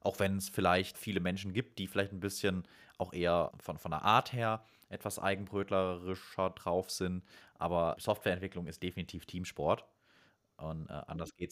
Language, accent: German, German